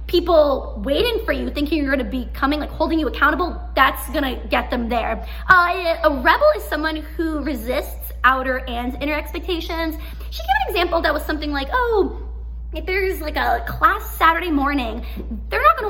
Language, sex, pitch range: English, female, 270-360 Hz